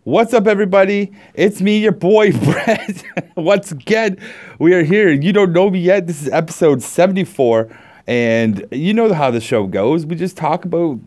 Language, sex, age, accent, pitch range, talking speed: English, male, 30-49, American, 120-170 Hz, 180 wpm